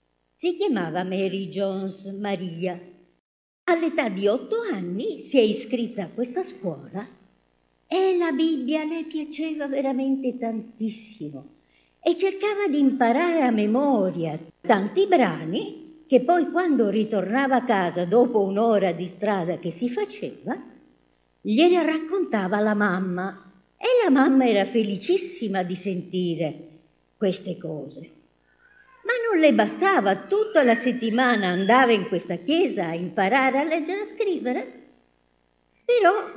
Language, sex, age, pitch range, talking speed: Italian, male, 50-69, 180-295 Hz, 120 wpm